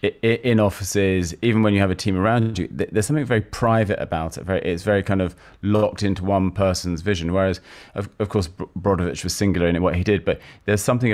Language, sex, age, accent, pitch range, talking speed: English, male, 30-49, British, 90-105 Hz, 220 wpm